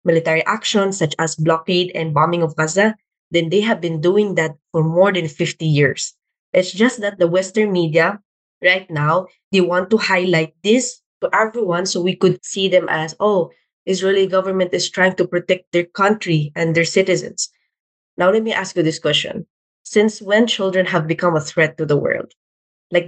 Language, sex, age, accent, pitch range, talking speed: English, female, 20-39, Filipino, 160-195 Hz, 185 wpm